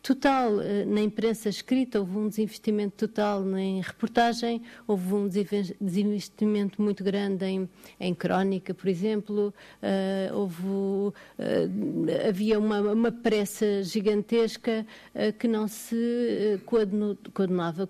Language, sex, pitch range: Portuguese, female, 195-225 Hz